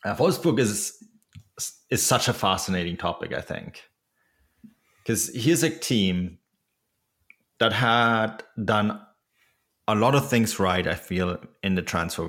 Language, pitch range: English, 90-110 Hz